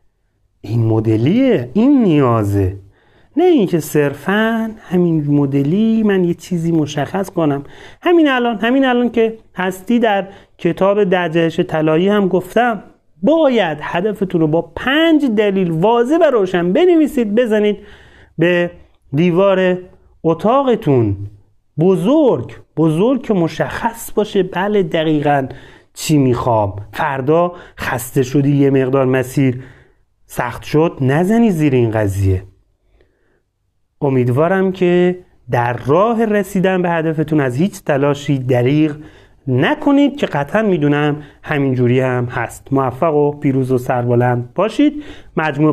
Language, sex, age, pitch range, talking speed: Persian, male, 30-49, 130-200 Hz, 115 wpm